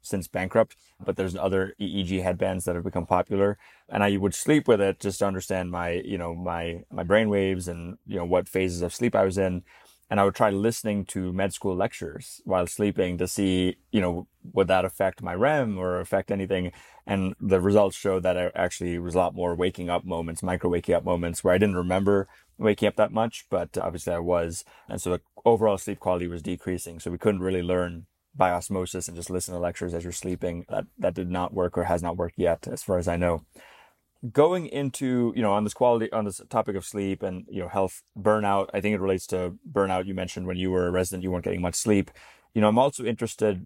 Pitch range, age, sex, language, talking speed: 90-100 Hz, 20-39, male, English, 230 wpm